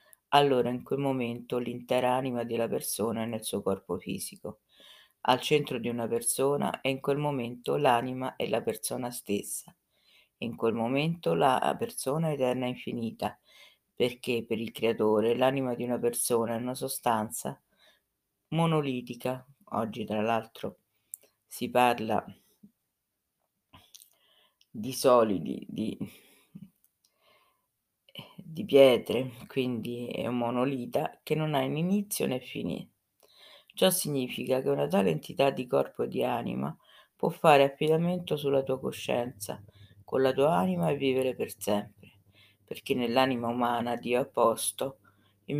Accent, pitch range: native, 115-140 Hz